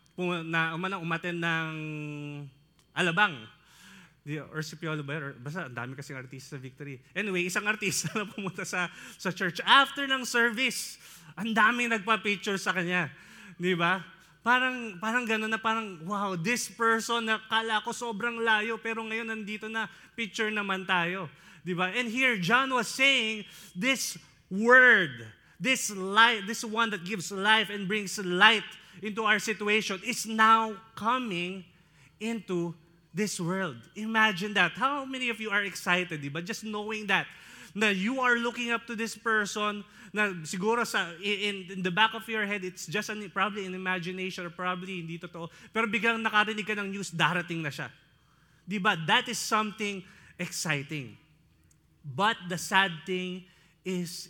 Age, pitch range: 20-39, 170-220 Hz